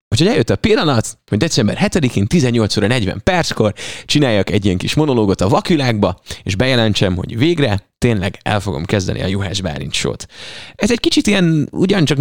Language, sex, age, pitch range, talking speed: Hungarian, male, 20-39, 100-140 Hz, 160 wpm